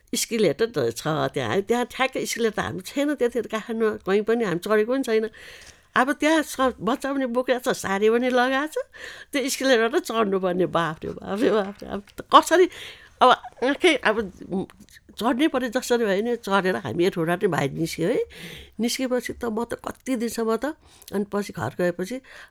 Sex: female